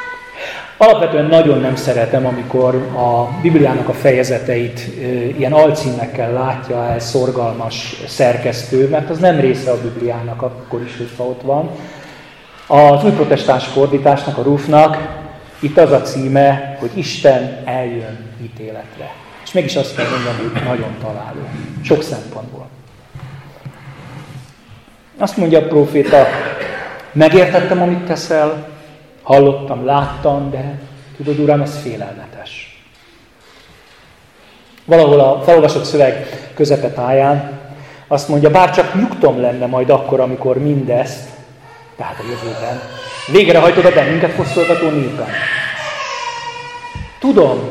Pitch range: 125-155 Hz